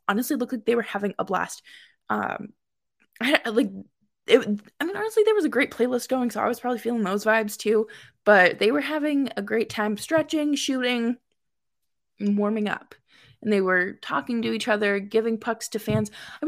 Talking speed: 190 wpm